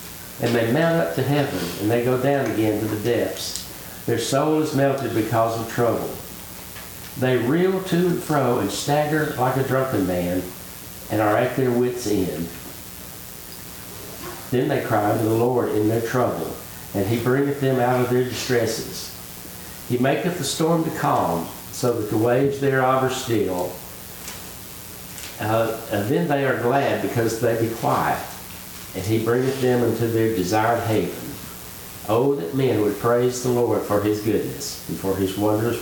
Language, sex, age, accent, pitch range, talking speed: English, male, 60-79, American, 105-140 Hz, 170 wpm